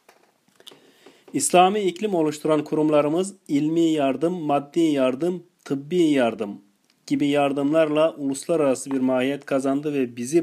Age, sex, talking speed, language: 40-59, male, 105 wpm, Turkish